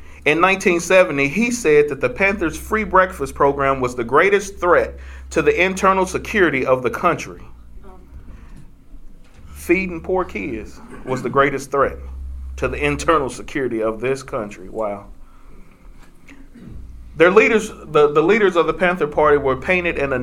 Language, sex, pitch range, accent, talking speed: English, male, 120-175 Hz, American, 140 wpm